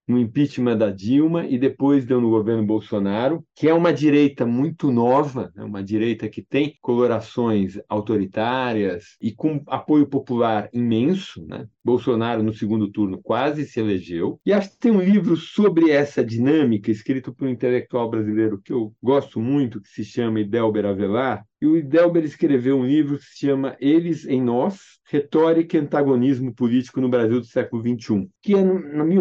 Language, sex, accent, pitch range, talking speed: Portuguese, male, Brazilian, 115-155 Hz, 175 wpm